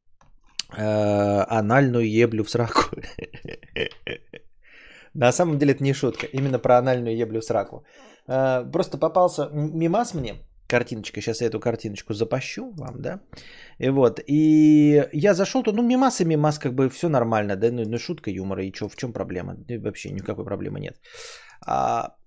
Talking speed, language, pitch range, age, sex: 160 wpm, Bulgarian, 110-170 Hz, 20-39, male